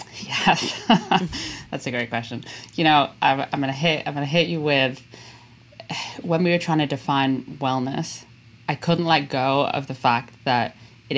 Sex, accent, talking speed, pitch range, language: female, British, 190 wpm, 125-150 Hz, English